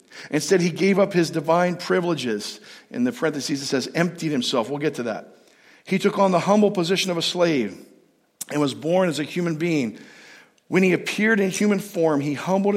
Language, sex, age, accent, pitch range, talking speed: English, male, 50-69, American, 145-185 Hz, 195 wpm